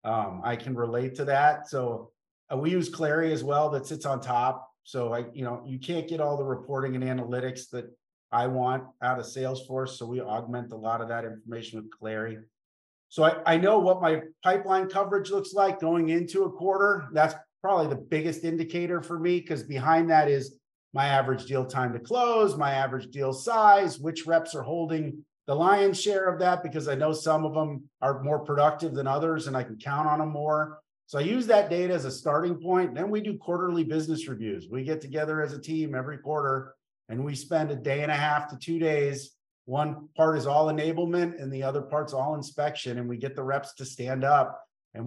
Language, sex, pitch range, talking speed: English, male, 130-165 Hz, 215 wpm